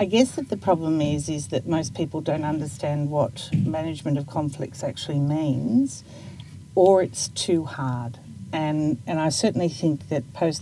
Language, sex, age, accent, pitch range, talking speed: English, female, 50-69, Australian, 135-160 Hz, 165 wpm